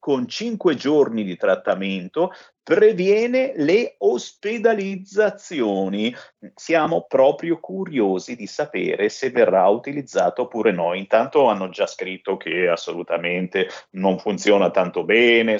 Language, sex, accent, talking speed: Italian, male, native, 110 wpm